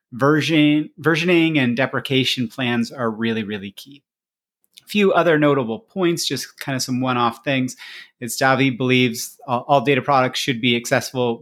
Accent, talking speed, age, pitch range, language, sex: American, 160 wpm, 30-49, 120-145 Hz, English, male